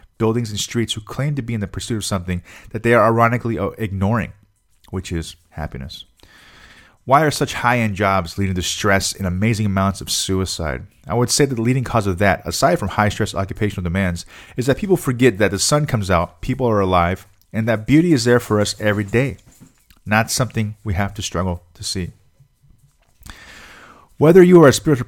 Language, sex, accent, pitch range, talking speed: English, male, American, 90-115 Hz, 195 wpm